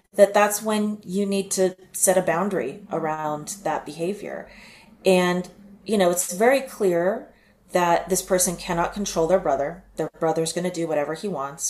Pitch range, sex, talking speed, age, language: 155-190 Hz, female, 170 wpm, 30-49, English